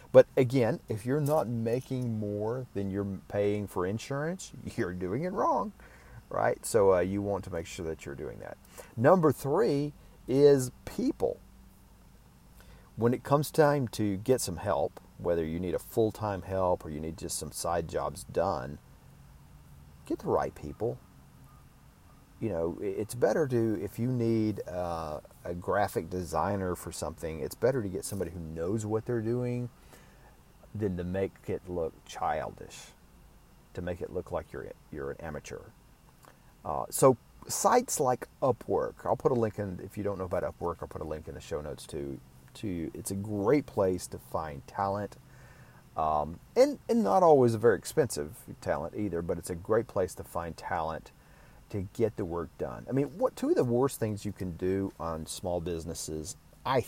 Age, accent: 40-59, American